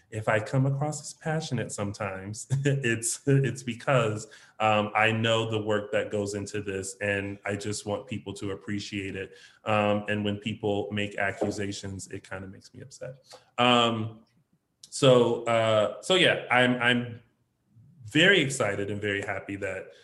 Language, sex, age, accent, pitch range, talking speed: English, male, 30-49, American, 105-120 Hz, 155 wpm